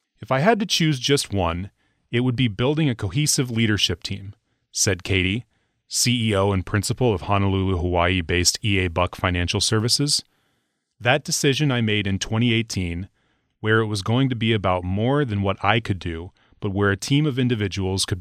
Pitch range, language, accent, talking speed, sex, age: 95-125 Hz, English, American, 175 wpm, male, 30-49